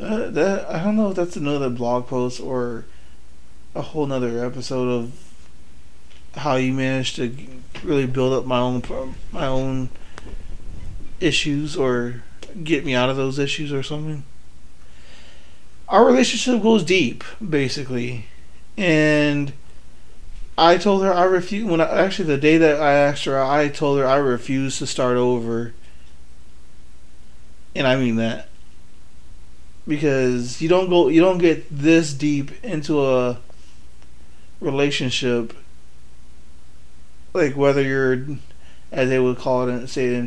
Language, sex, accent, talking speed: English, male, American, 135 wpm